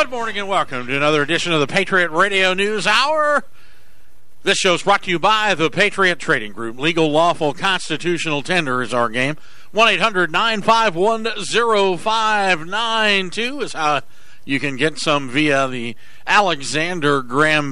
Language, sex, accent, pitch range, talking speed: English, male, American, 135-185 Hz, 150 wpm